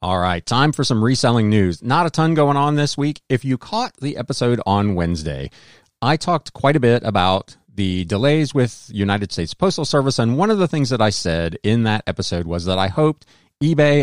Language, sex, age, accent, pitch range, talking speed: English, male, 40-59, American, 100-140 Hz, 215 wpm